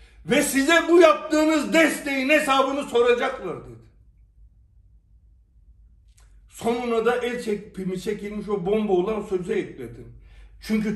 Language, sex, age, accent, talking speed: Turkish, male, 60-79, native, 100 wpm